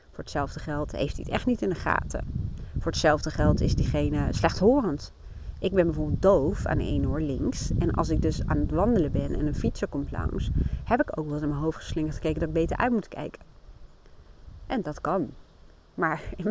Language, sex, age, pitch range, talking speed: Dutch, female, 30-49, 155-200 Hz, 215 wpm